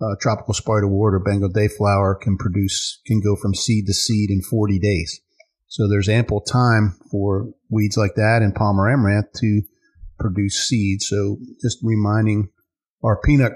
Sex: male